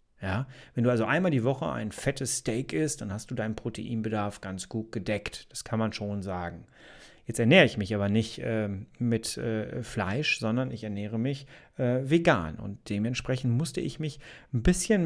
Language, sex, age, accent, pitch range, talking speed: German, male, 40-59, German, 115-150 Hz, 185 wpm